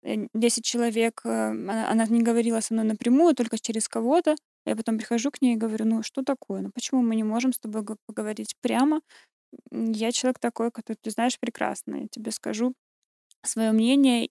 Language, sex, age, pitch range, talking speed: Russian, female, 20-39, 215-255 Hz, 180 wpm